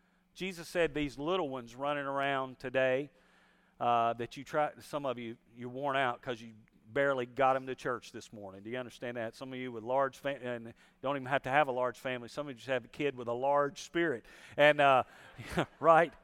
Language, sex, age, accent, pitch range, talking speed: English, male, 40-59, American, 125-150 Hz, 220 wpm